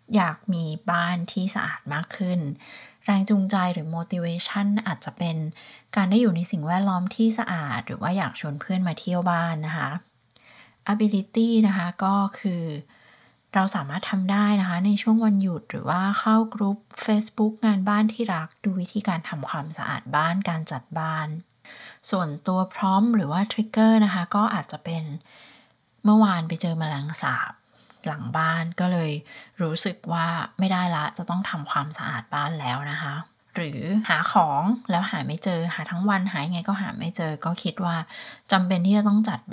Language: Thai